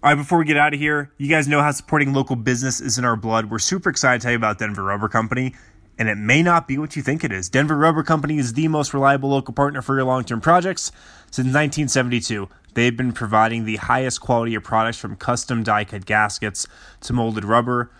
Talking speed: 230 wpm